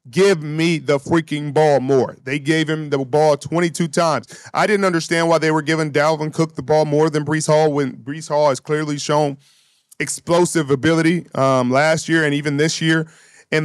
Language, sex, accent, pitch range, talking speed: English, male, American, 145-160 Hz, 195 wpm